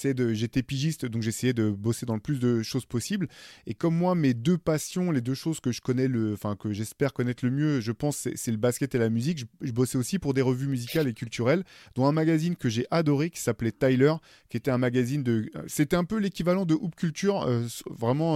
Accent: French